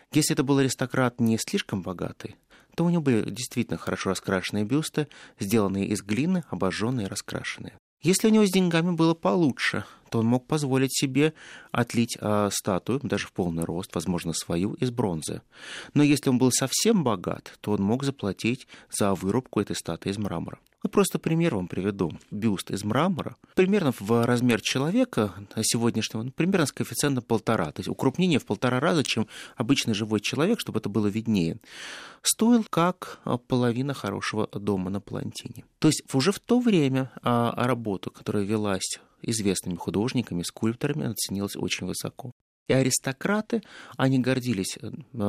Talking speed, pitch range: 160 wpm, 105-150 Hz